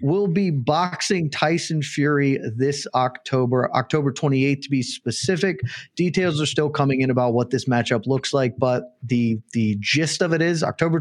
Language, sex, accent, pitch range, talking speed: English, male, American, 125-160 Hz, 170 wpm